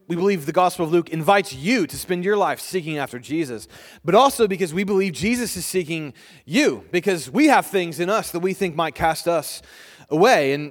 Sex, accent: male, American